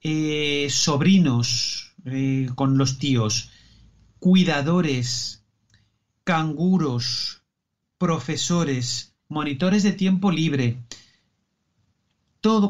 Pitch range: 125-170 Hz